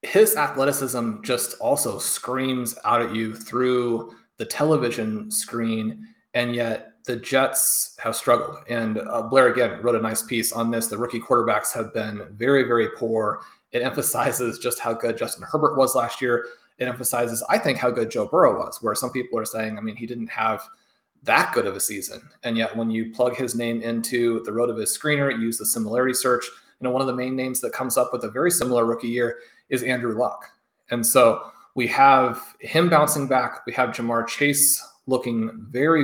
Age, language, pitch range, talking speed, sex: 30-49, English, 115-135 Hz, 200 wpm, male